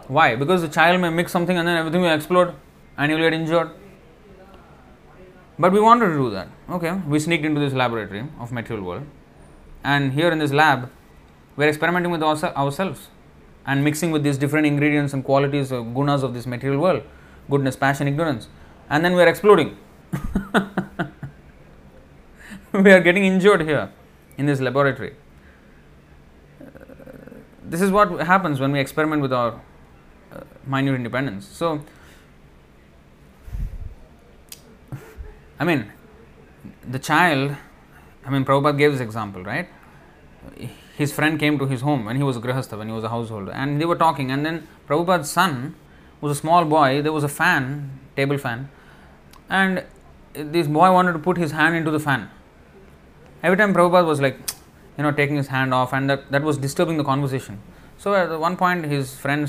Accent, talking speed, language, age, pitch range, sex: Indian, 165 wpm, English, 20-39, 115-165 Hz, male